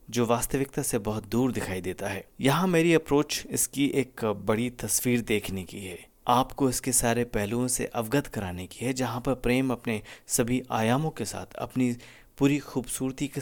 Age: 30-49